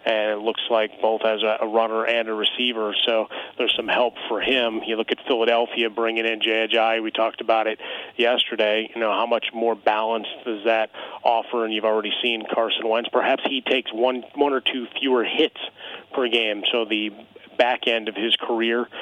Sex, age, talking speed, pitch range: male, 30-49, 195 wpm, 110-120 Hz